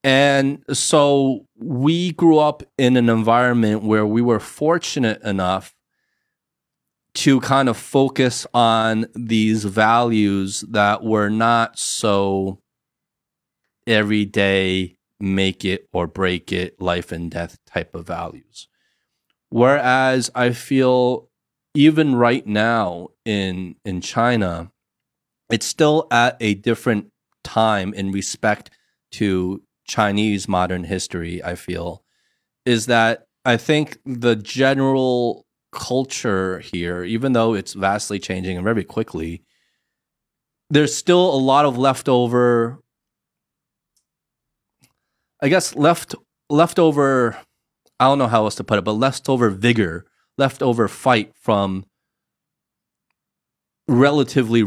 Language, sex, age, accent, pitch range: Chinese, male, 30-49, American, 95-130 Hz